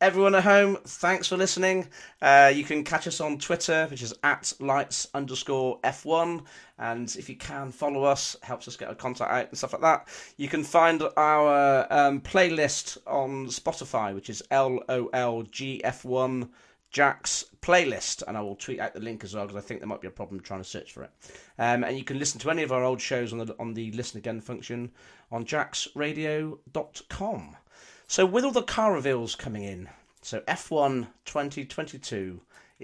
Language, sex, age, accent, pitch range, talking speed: English, male, 40-59, British, 115-155 Hz, 185 wpm